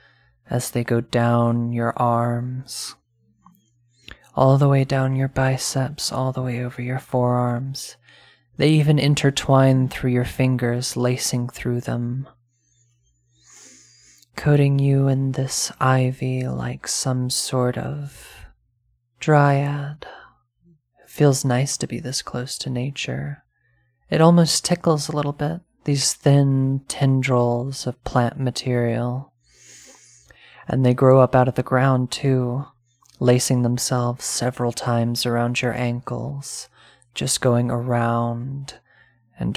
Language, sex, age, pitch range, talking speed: English, male, 20-39, 120-135 Hz, 120 wpm